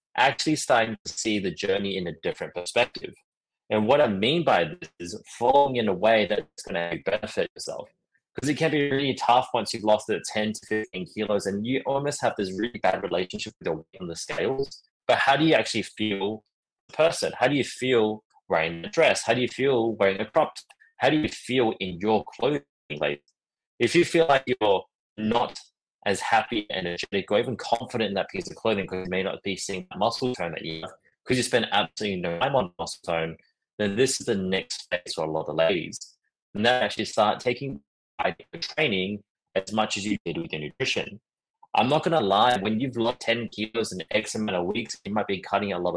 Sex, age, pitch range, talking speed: male, 20-39, 95-120 Hz, 220 wpm